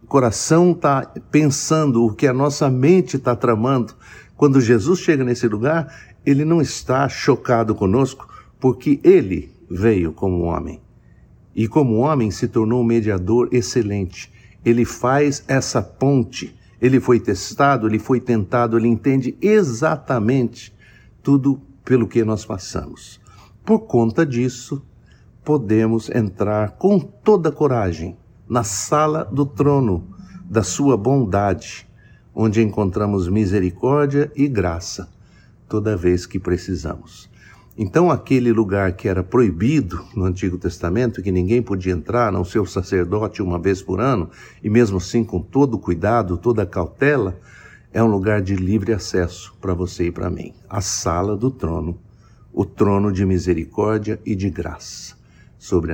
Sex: male